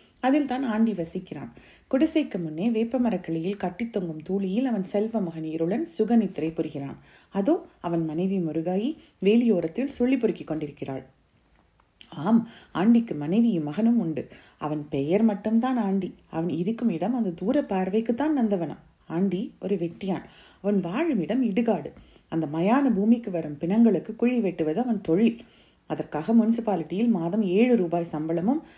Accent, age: native, 30-49